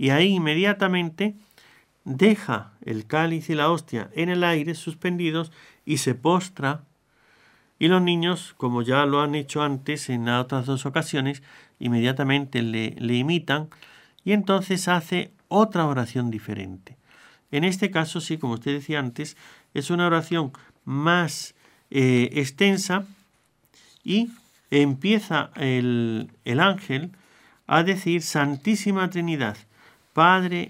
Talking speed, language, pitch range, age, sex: 125 wpm, Spanish, 135-175 Hz, 50-69, male